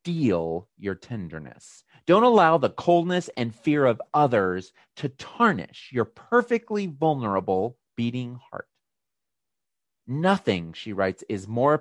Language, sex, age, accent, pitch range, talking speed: English, male, 40-59, American, 105-160 Hz, 115 wpm